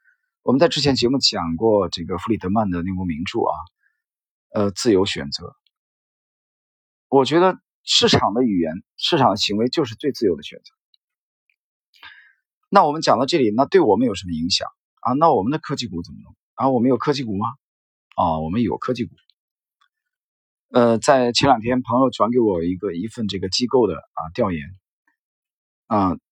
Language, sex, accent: Chinese, male, native